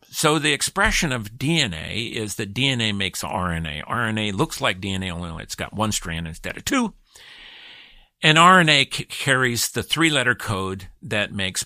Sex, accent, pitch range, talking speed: male, American, 105-155 Hz, 155 wpm